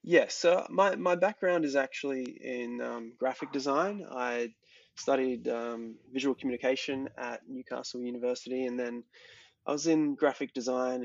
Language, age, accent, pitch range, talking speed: English, 20-39, Australian, 120-140 Hz, 135 wpm